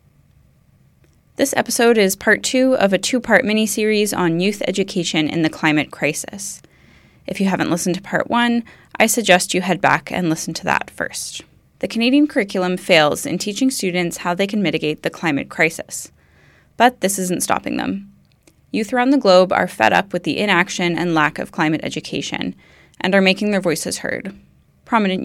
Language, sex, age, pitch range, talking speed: English, female, 10-29, 170-225 Hz, 175 wpm